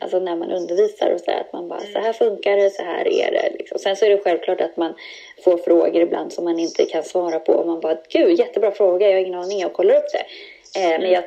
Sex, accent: female, native